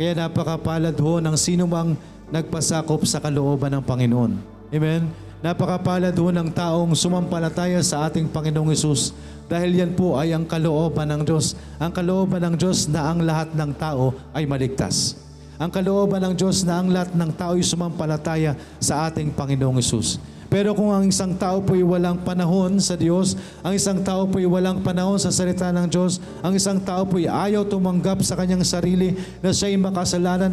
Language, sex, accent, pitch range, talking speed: Filipino, male, native, 155-190 Hz, 165 wpm